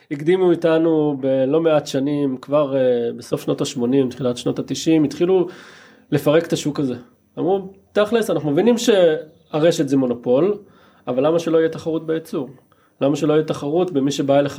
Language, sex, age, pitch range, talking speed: Hebrew, male, 20-39, 140-175 Hz, 155 wpm